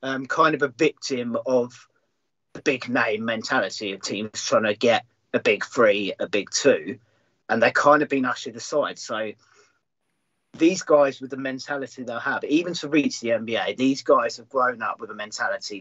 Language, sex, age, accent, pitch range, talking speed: English, male, 40-59, British, 125-160 Hz, 185 wpm